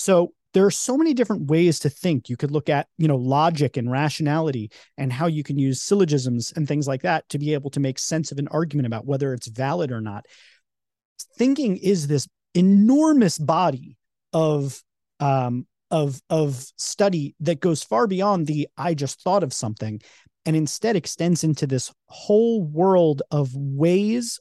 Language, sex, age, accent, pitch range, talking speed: English, male, 30-49, American, 130-165 Hz, 175 wpm